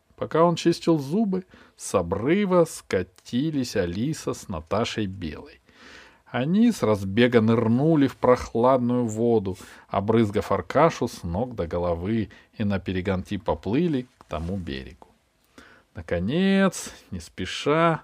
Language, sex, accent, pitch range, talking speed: Russian, male, native, 100-155 Hz, 115 wpm